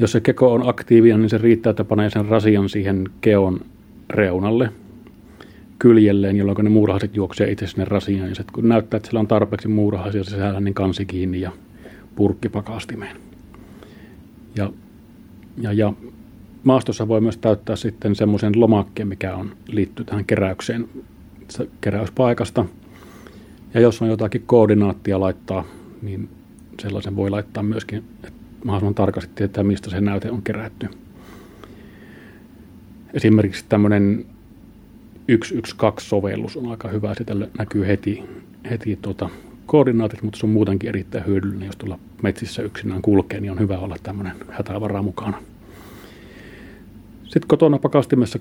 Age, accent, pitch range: 30-49, native, 100-115 Hz